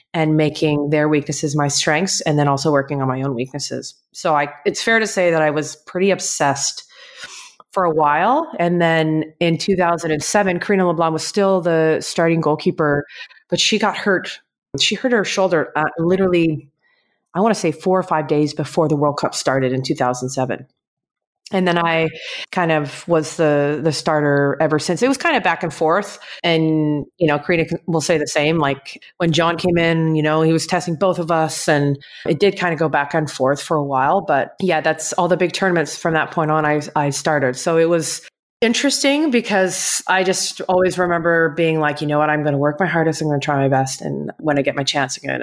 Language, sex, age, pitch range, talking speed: English, female, 30-49, 150-180 Hz, 215 wpm